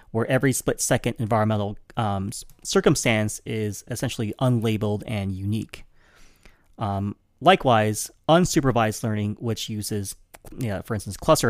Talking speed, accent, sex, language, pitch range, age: 105 wpm, American, male, English, 105-130 Hz, 30-49